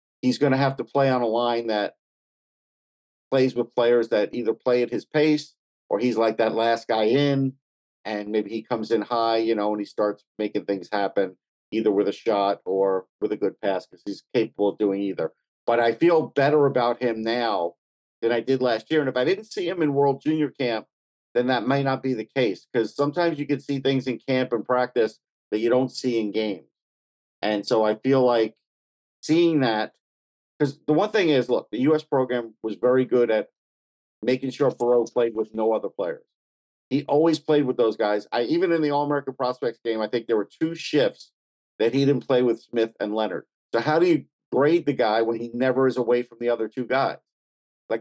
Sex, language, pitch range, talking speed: male, English, 110-140 Hz, 215 wpm